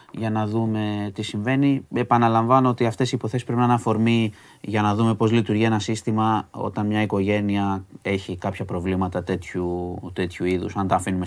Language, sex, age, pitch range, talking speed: Greek, male, 20-39, 95-115 Hz, 175 wpm